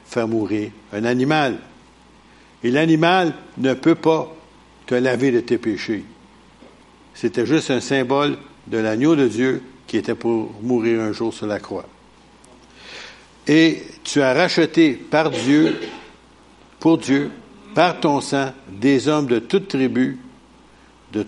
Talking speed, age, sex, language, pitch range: 135 wpm, 70-89, male, French, 115-155 Hz